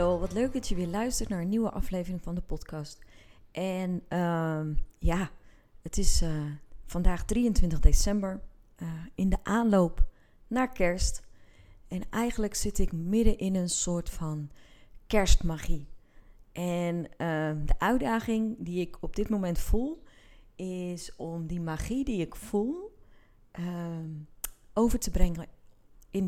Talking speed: 135 wpm